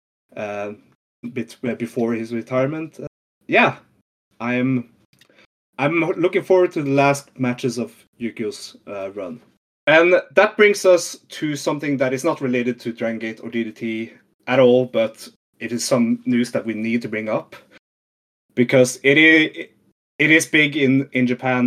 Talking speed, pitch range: 160 wpm, 110-145 Hz